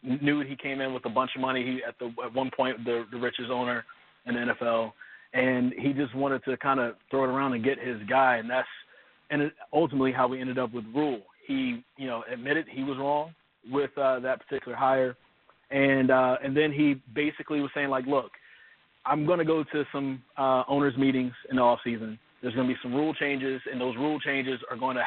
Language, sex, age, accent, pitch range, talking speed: English, male, 30-49, American, 125-140 Hz, 230 wpm